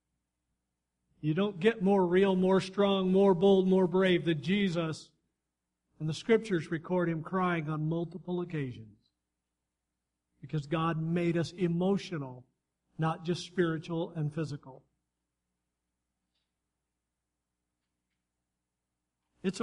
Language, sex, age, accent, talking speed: English, male, 50-69, American, 100 wpm